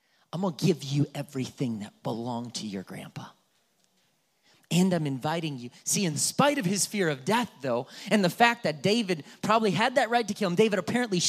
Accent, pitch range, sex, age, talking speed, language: American, 185-290 Hz, male, 30-49, 200 wpm, English